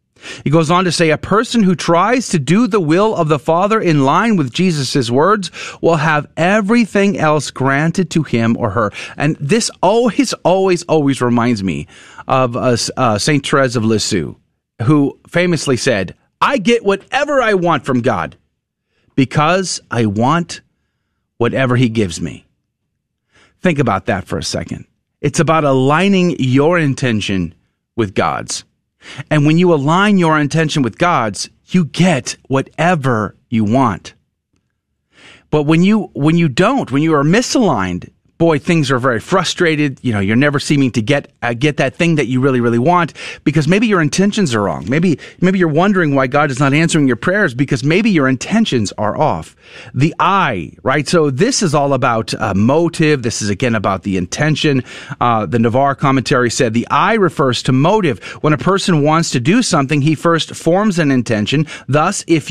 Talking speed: 175 wpm